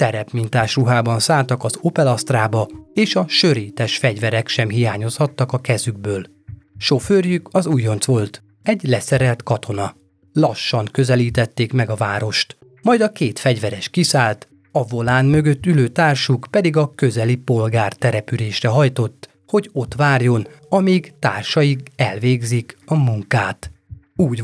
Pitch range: 115-150 Hz